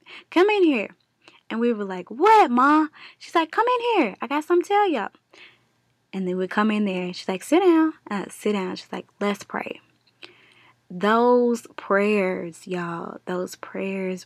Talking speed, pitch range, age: 180 wpm, 180-210 Hz, 10-29